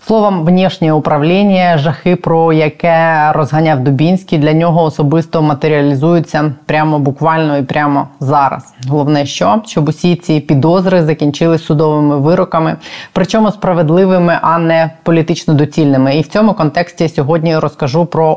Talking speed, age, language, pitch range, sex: 130 wpm, 20-39, Ukrainian, 160-185 Hz, female